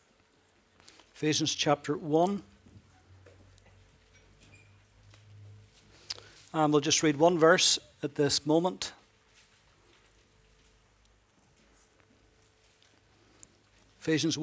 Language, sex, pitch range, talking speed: English, male, 140-185 Hz, 55 wpm